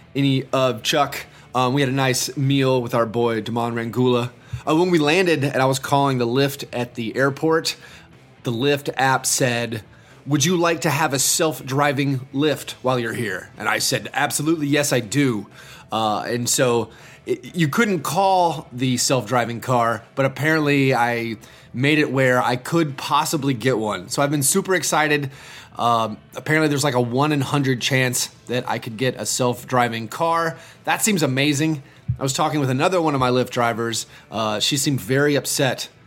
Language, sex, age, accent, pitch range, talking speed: English, male, 30-49, American, 120-150 Hz, 185 wpm